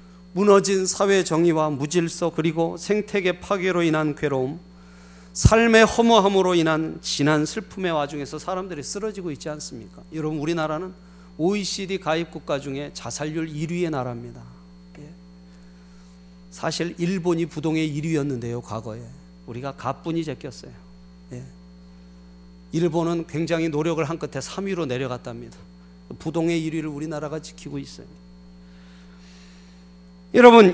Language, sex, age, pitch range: Korean, male, 30-49, 120-195 Hz